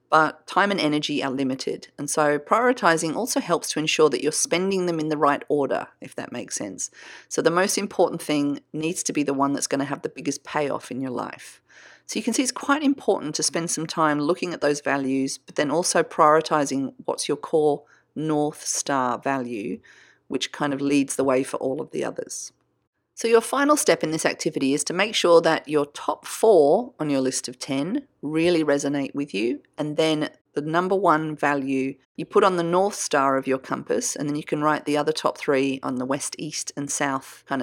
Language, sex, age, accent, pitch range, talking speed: English, female, 40-59, Australian, 140-180 Hz, 215 wpm